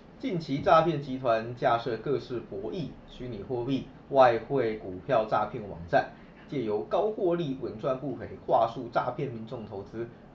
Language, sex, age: Chinese, male, 20-39